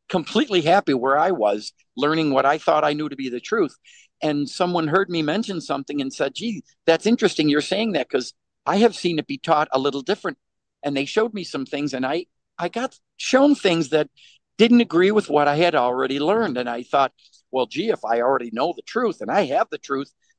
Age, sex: 50-69, male